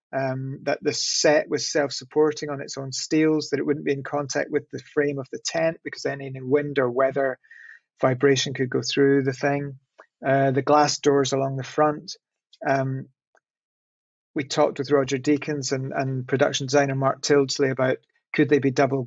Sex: male